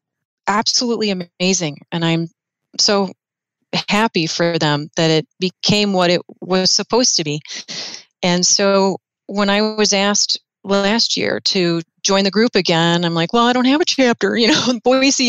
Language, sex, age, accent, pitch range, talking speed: English, female, 30-49, American, 175-215 Hz, 165 wpm